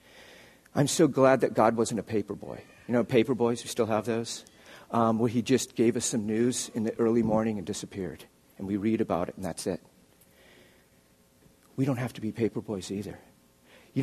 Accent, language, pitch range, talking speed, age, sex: American, English, 110-135 Hz, 205 wpm, 50-69, male